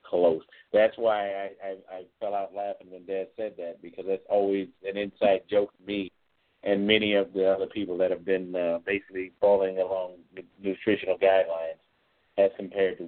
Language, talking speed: English, 185 wpm